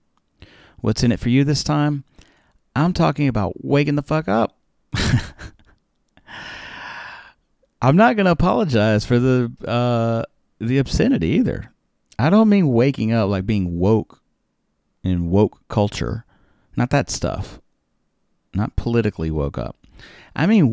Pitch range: 95-140 Hz